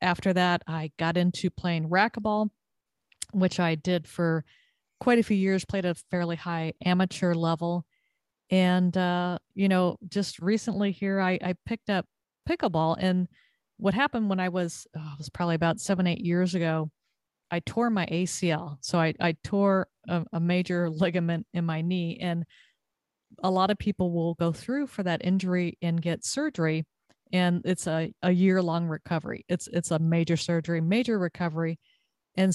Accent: American